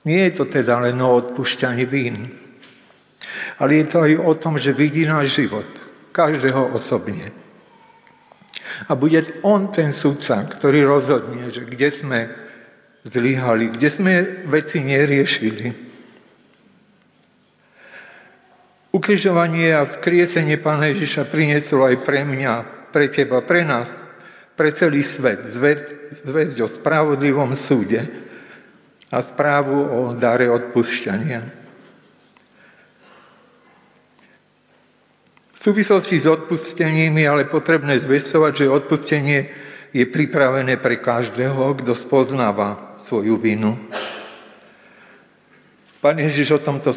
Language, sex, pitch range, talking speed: Slovak, male, 125-155 Hz, 105 wpm